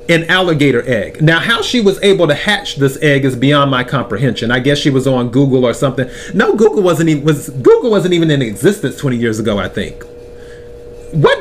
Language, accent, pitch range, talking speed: English, American, 120-190 Hz, 210 wpm